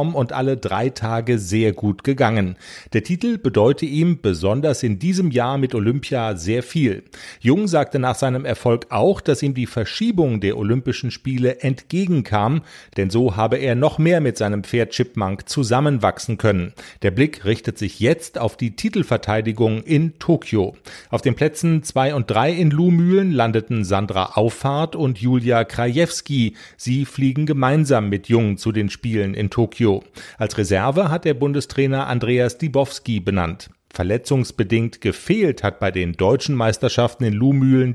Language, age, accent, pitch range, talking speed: German, 40-59, German, 110-145 Hz, 150 wpm